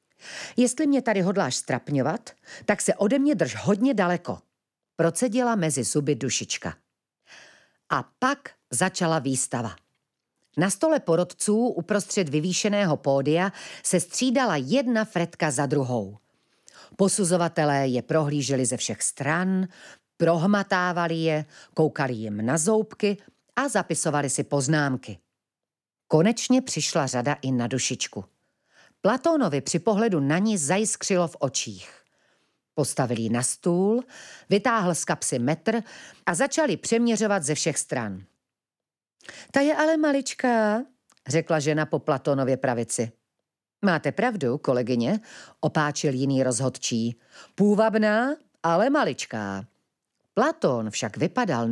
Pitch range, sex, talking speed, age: 135-215 Hz, female, 110 wpm, 40-59